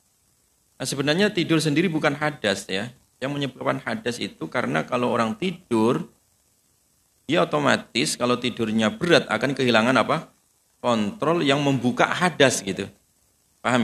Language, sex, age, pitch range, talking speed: Indonesian, male, 40-59, 105-140 Hz, 125 wpm